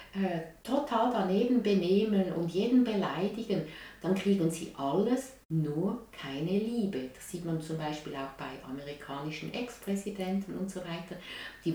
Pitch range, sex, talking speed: 150-205 Hz, female, 135 wpm